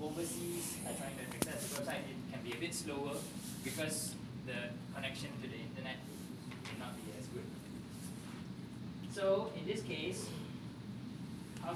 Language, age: English, 20-39